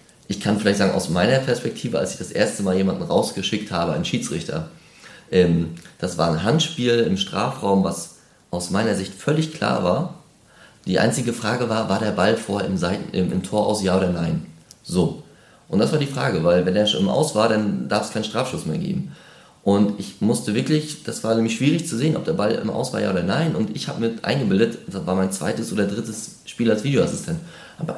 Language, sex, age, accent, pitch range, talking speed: German, male, 30-49, German, 100-145 Hz, 210 wpm